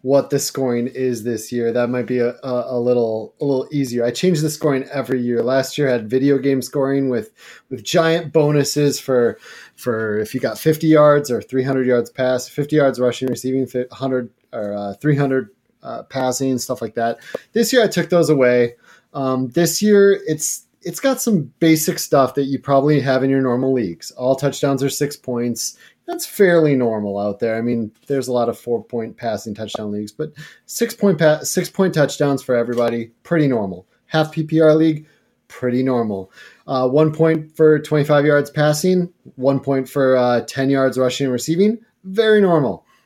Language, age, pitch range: English, 30-49, 120-150 Hz